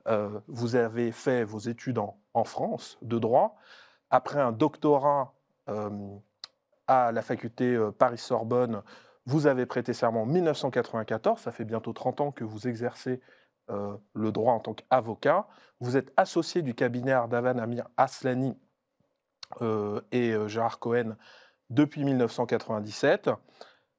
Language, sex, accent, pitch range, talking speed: French, male, French, 115-140 Hz, 140 wpm